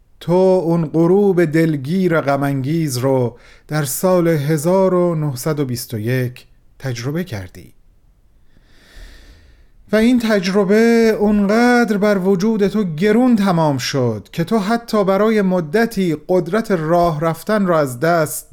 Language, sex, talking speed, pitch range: Persian, male, 105 wpm, 140-195 Hz